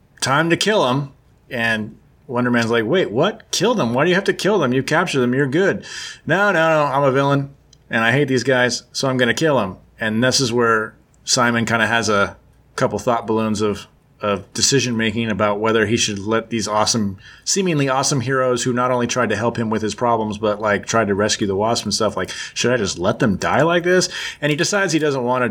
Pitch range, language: 110-135 Hz, English